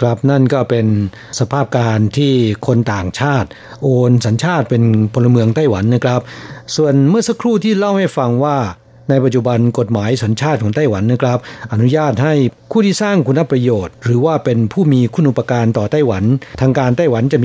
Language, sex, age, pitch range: Thai, male, 60-79, 120-145 Hz